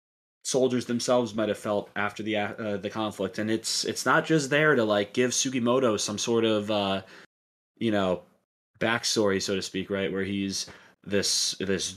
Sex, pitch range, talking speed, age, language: male, 100-125 Hz, 175 wpm, 20-39, English